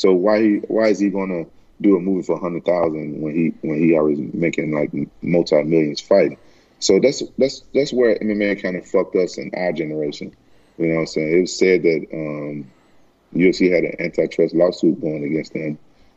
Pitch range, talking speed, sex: 80-95 Hz, 200 wpm, male